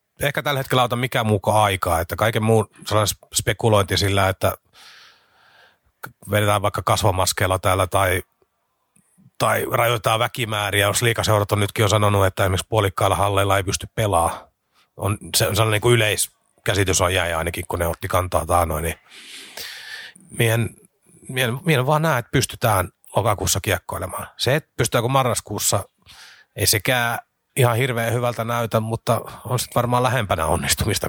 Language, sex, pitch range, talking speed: Finnish, male, 100-120 Hz, 140 wpm